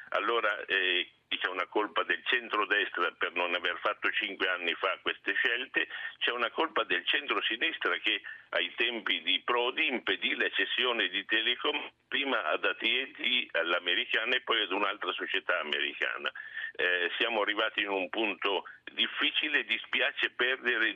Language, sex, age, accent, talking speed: Italian, male, 60-79, native, 140 wpm